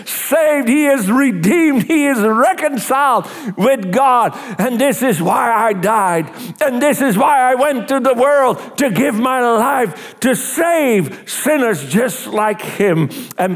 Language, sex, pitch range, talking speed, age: English, male, 205-270 Hz, 155 wpm, 60-79